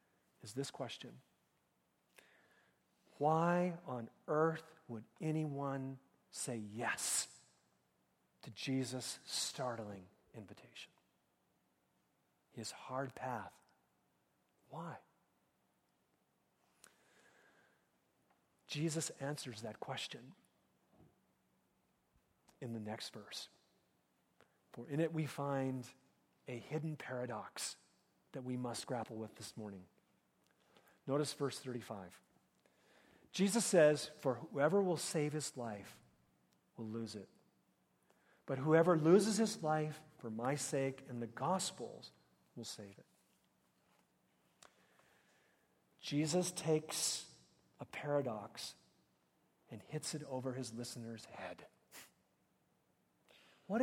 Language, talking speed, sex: English, 90 wpm, male